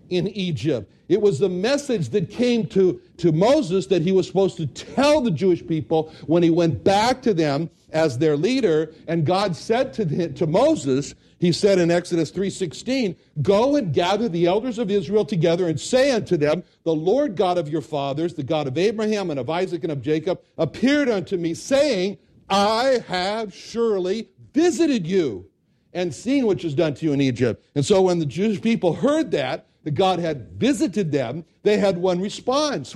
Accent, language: American, English